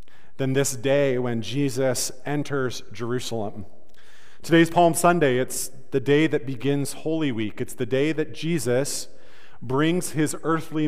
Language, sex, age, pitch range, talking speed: English, male, 40-59, 120-150 Hz, 140 wpm